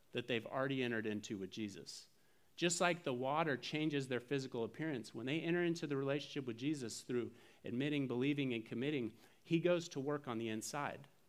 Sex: male